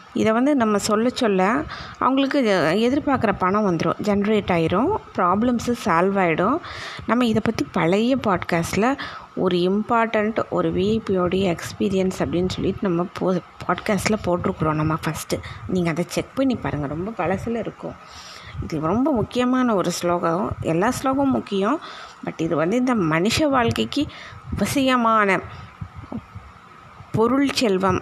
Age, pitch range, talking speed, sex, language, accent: 20-39, 175-225 Hz, 120 wpm, female, Tamil, native